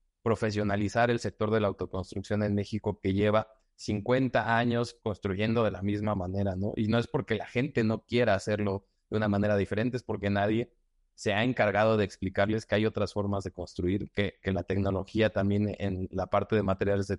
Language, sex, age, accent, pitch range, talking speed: Spanish, male, 30-49, Mexican, 95-110 Hz, 195 wpm